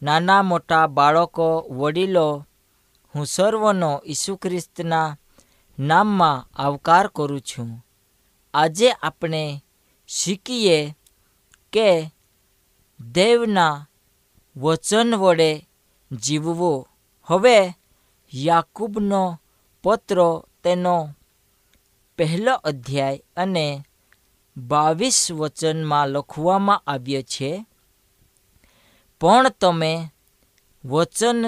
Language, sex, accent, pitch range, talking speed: Hindi, female, native, 140-185 Hz, 65 wpm